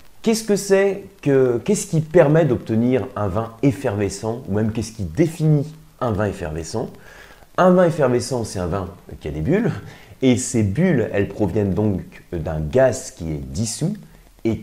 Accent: French